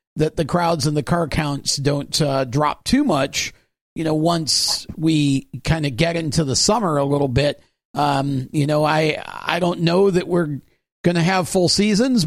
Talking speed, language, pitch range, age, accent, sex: 190 wpm, English, 140-165 Hz, 50-69, American, male